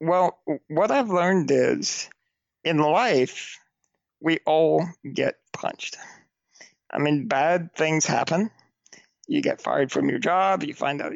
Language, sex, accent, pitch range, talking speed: English, male, American, 135-175 Hz, 135 wpm